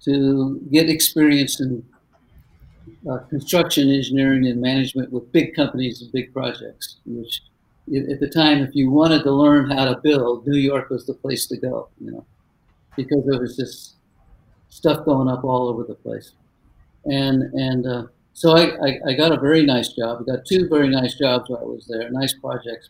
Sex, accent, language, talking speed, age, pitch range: male, American, English, 185 wpm, 60-79, 125-145 Hz